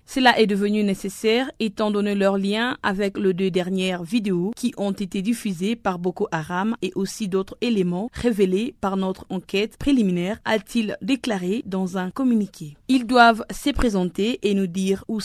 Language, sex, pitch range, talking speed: French, female, 190-230 Hz, 165 wpm